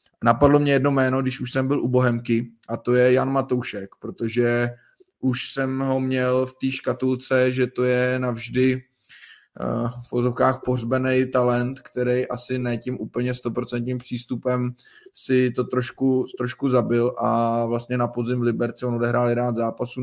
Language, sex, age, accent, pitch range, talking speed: Czech, male, 20-39, native, 115-125 Hz, 160 wpm